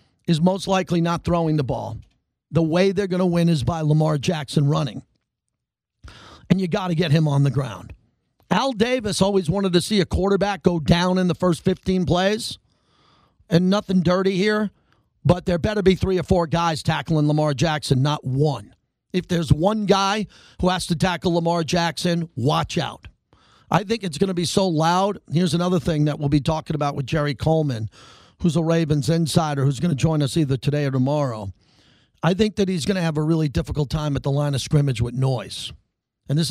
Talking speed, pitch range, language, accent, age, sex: 200 wpm, 145-180 Hz, English, American, 40-59, male